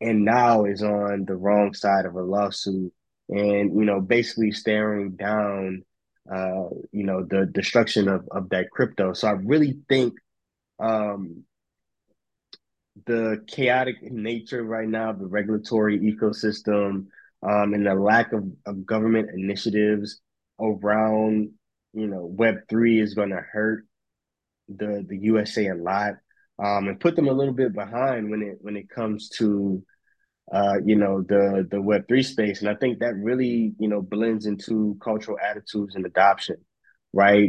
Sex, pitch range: male, 100-110 Hz